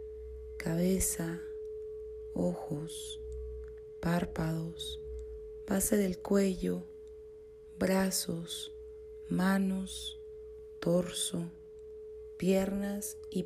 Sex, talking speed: female, 50 wpm